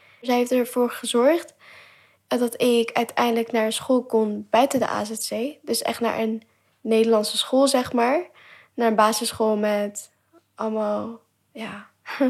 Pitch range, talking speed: 225-265 Hz, 135 wpm